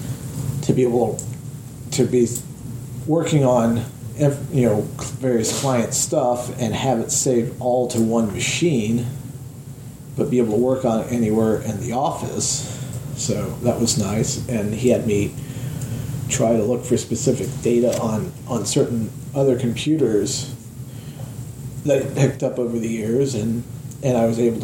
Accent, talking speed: American, 150 wpm